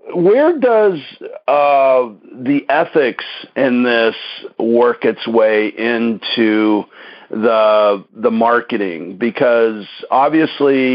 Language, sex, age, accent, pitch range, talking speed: English, male, 50-69, American, 110-130 Hz, 90 wpm